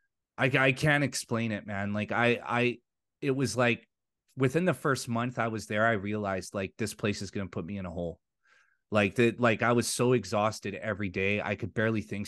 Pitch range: 100-120 Hz